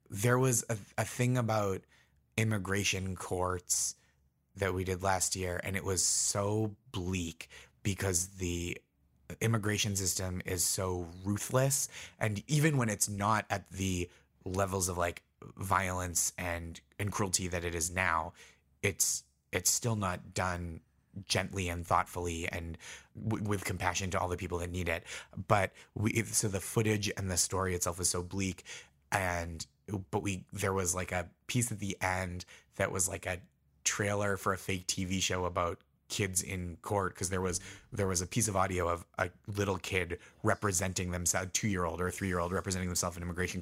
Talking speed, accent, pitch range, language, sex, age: 170 wpm, American, 90-105 Hz, English, male, 20-39